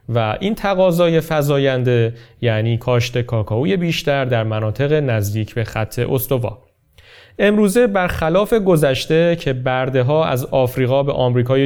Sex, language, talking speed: male, Persian, 125 wpm